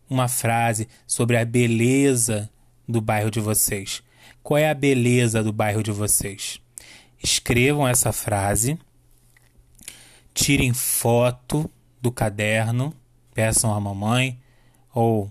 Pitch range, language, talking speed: 115-130 Hz, Portuguese, 110 wpm